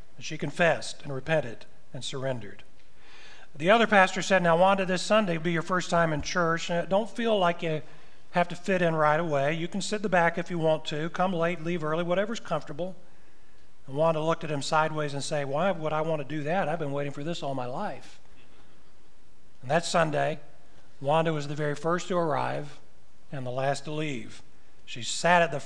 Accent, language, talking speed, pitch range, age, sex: American, English, 210 wpm, 150-185 Hz, 40-59, male